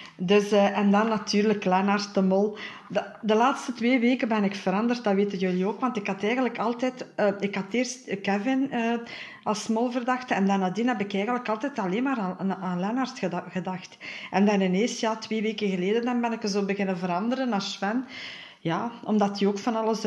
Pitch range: 190-225 Hz